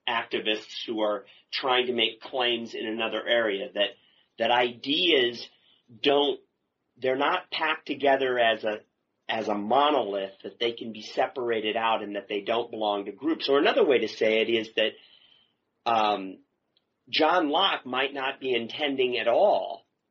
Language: English